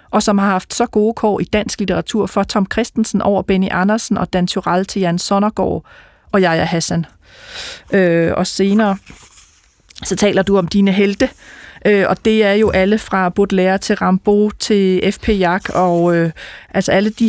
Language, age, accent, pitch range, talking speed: Danish, 30-49, native, 185-215 Hz, 180 wpm